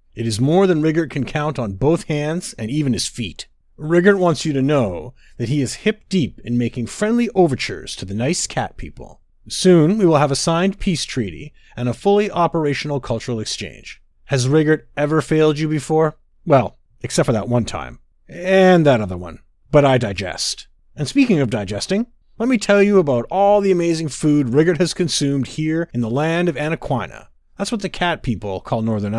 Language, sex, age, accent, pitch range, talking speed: English, male, 30-49, American, 125-190 Hz, 195 wpm